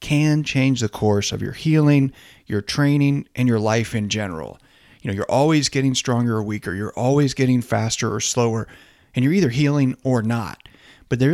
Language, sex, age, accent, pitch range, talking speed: English, male, 40-59, American, 110-140 Hz, 190 wpm